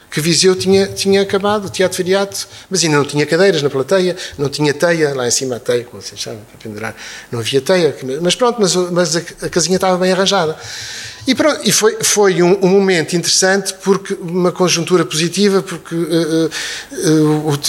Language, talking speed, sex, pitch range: Portuguese, 185 wpm, male, 130-180 Hz